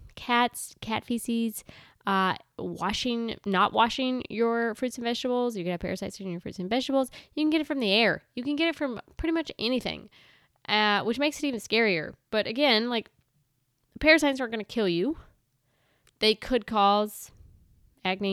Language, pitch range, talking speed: English, 180-240 Hz, 175 wpm